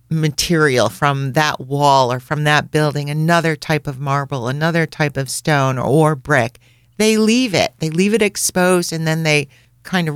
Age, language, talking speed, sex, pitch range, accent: 50-69, English, 175 wpm, female, 135-170 Hz, American